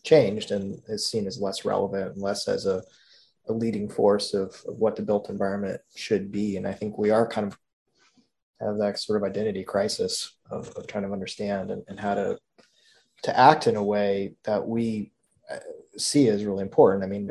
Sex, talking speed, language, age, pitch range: male, 200 wpm, English, 20-39, 100-115 Hz